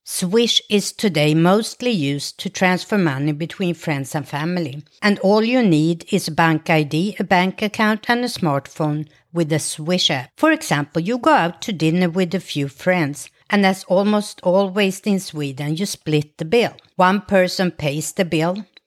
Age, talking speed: 60-79, 180 wpm